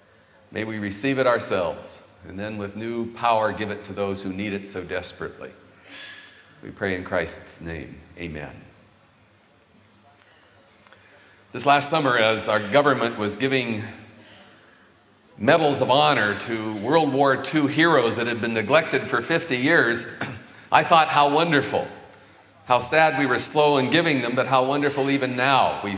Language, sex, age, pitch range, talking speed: English, male, 40-59, 115-165 Hz, 150 wpm